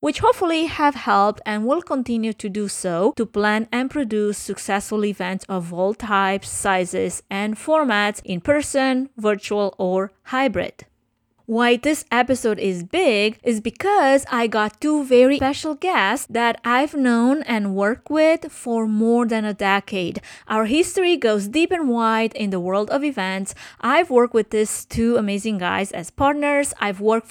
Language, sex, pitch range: English, female, 200-260 Hz